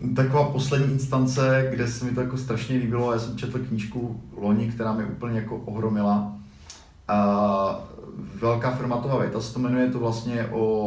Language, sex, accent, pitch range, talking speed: Czech, male, native, 115-130 Hz, 155 wpm